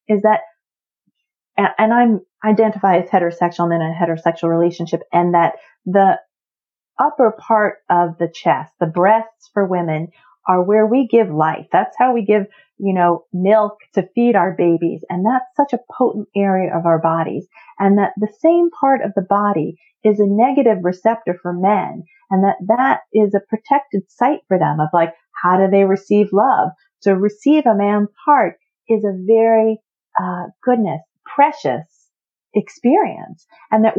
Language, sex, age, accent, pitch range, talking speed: English, female, 40-59, American, 180-225 Hz, 165 wpm